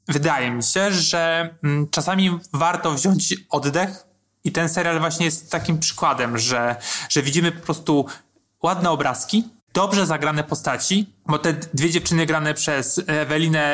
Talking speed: 140 wpm